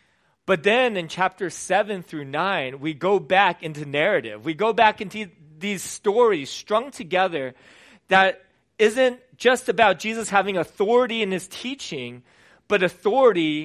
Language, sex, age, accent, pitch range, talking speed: English, male, 30-49, American, 155-200 Hz, 140 wpm